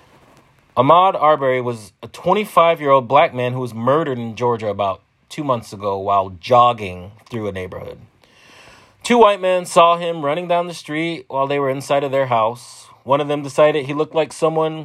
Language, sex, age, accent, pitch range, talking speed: English, male, 30-49, American, 125-180 Hz, 190 wpm